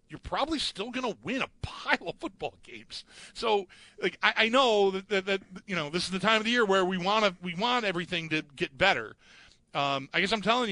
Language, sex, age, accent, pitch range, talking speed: English, male, 40-59, American, 140-200 Hz, 240 wpm